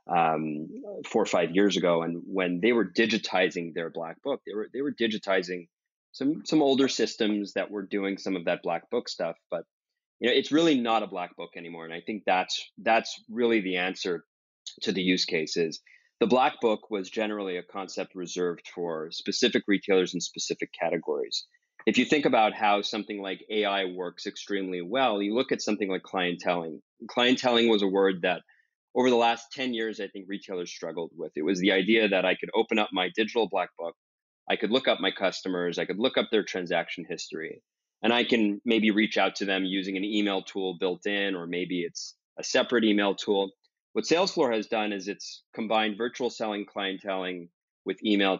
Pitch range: 90-110 Hz